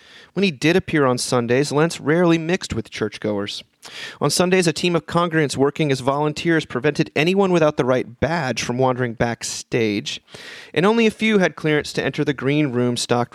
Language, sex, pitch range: English, male, 125-165 Hz